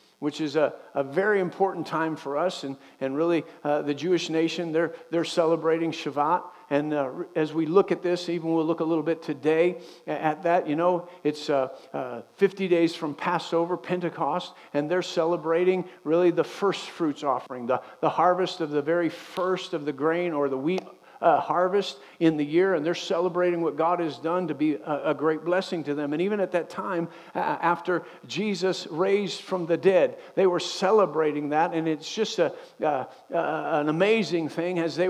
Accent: American